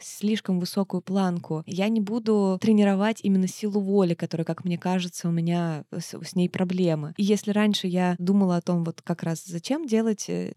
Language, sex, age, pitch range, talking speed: Russian, female, 20-39, 180-220 Hz, 180 wpm